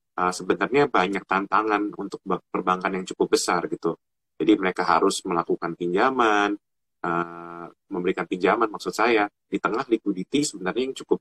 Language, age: Indonesian, 20-39